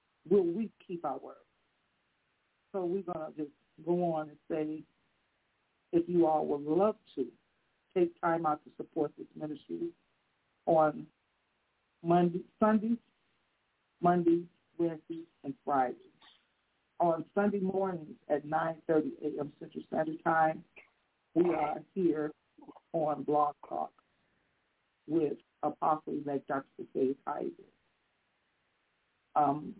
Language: English